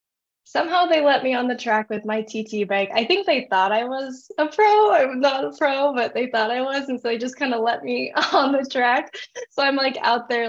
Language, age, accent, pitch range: English, 10-29, American, 205-245 Hz